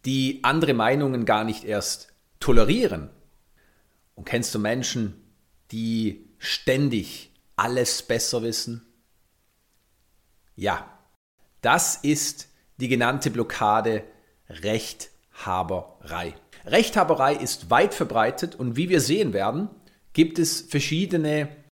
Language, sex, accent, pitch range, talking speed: German, male, German, 105-145 Hz, 95 wpm